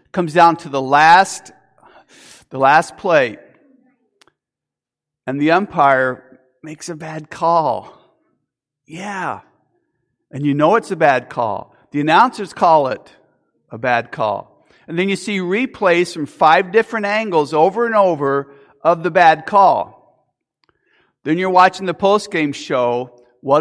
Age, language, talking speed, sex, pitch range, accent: 50-69, English, 135 wpm, male, 145-185 Hz, American